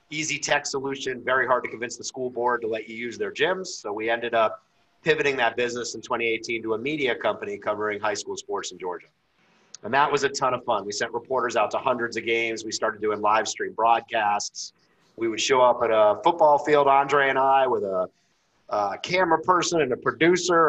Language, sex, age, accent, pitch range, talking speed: English, male, 30-49, American, 115-145 Hz, 220 wpm